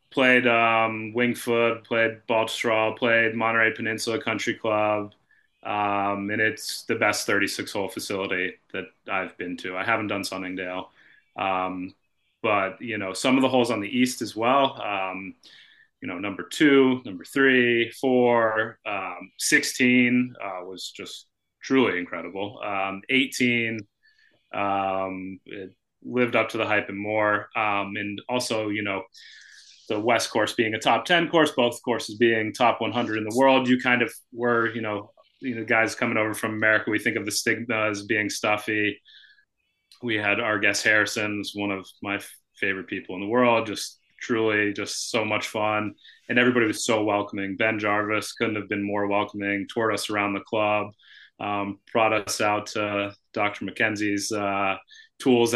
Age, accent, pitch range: 30-49, American, 105-120 Hz